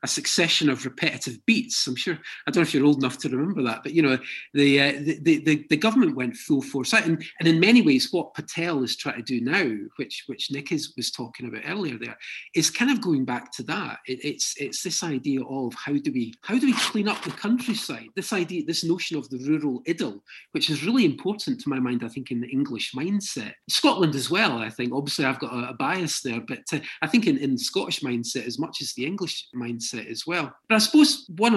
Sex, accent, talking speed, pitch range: male, British, 240 wpm, 135-185 Hz